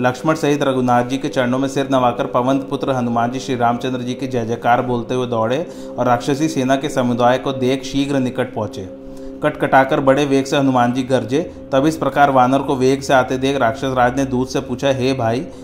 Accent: native